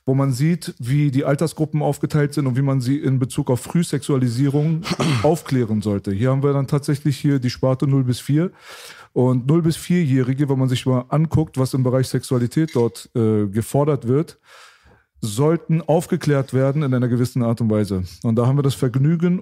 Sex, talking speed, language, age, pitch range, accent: male, 190 wpm, German, 40-59, 130-160 Hz, German